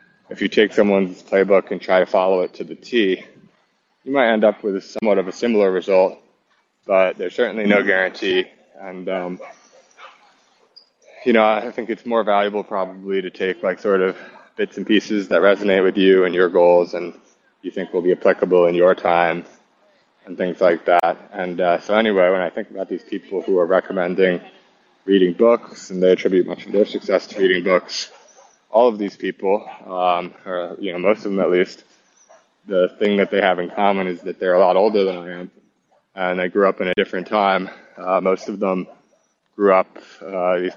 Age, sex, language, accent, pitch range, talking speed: 20-39, male, English, American, 90-105 Hz, 200 wpm